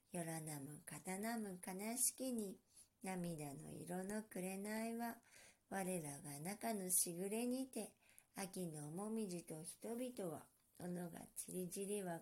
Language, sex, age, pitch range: Japanese, male, 50-69, 170-225 Hz